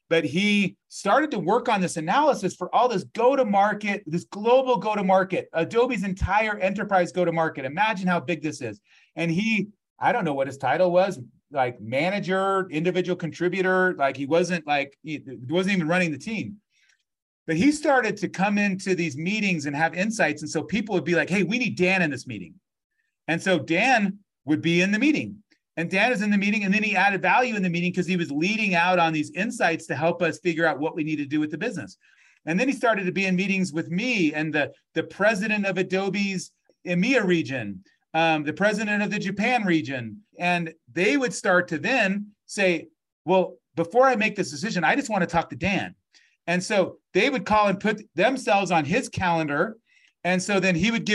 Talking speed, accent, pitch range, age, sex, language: 205 wpm, American, 165-205 Hz, 40-59, male, English